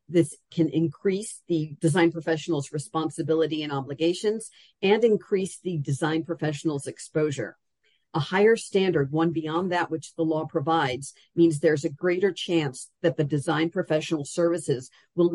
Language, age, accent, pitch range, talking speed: English, 50-69, American, 150-175 Hz, 140 wpm